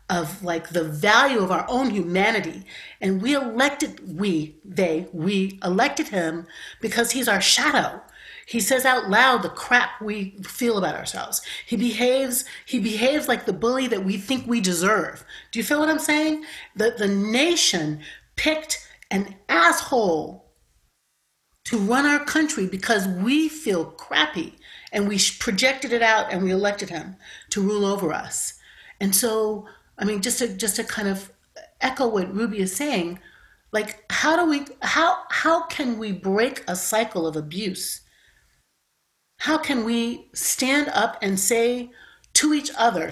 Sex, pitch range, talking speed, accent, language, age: female, 195-265 Hz, 155 wpm, American, English, 40-59